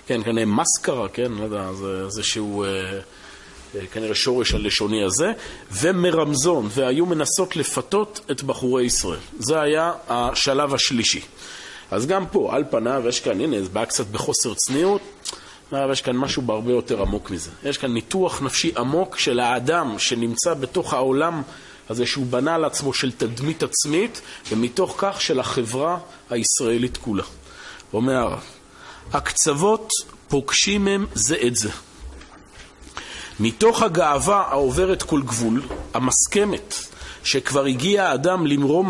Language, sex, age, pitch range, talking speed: Hebrew, male, 40-59, 120-180 Hz, 135 wpm